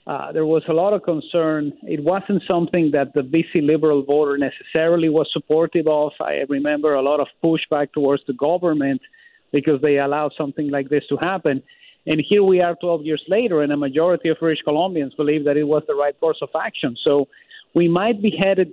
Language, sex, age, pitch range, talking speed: English, male, 50-69, 150-180 Hz, 200 wpm